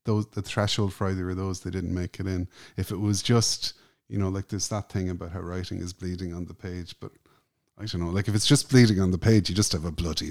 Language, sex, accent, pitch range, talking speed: English, male, Irish, 95-115 Hz, 275 wpm